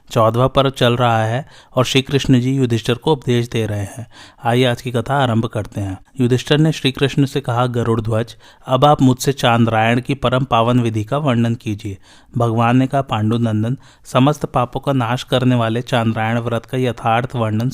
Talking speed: 190 wpm